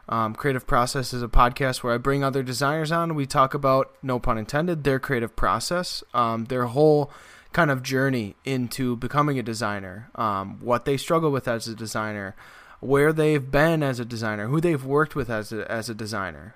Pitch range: 115-145 Hz